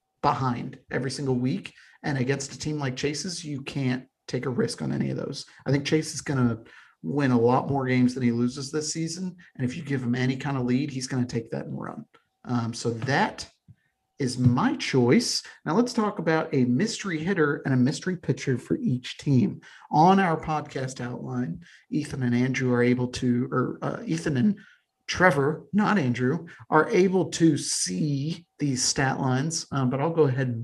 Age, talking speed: 40-59, 200 wpm